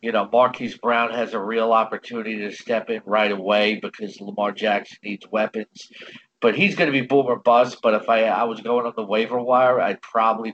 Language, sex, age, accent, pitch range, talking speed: English, male, 50-69, American, 110-130 Hz, 210 wpm